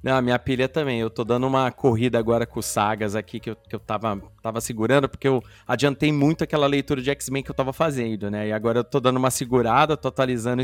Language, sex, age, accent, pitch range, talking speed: Portuguese, male, 30-49, Brazilian, 120-170 Hz, 235 wpm